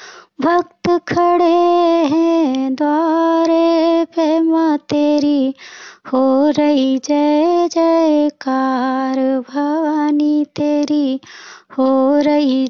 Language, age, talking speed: Hindi, 30-49, 65 wpm